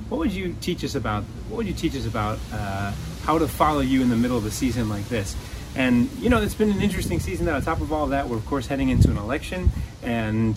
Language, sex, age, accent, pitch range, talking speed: English, male, 30-49, American, 110-145 Hz, 275 wpm